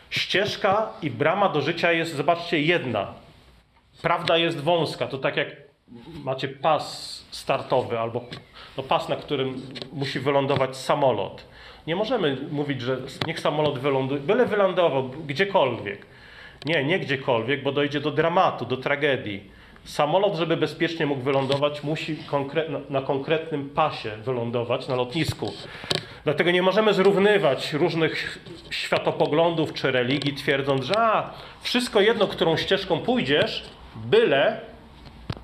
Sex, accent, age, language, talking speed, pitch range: male, native, 40-59, Polish, 125 wpm, 135-165 Hz